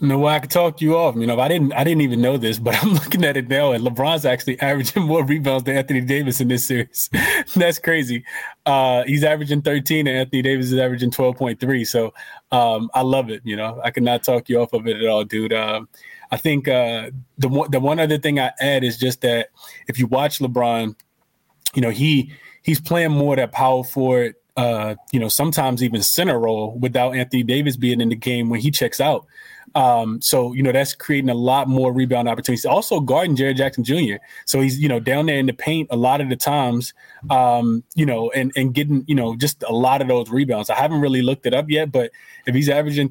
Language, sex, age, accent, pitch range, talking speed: English, male, 20-39, American, 125-145 Hz, 230 wpm